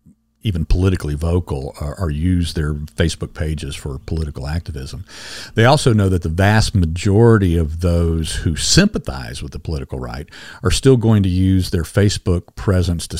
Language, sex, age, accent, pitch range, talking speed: English, male, 50-69, American, 80-105 Hz, 165 wpm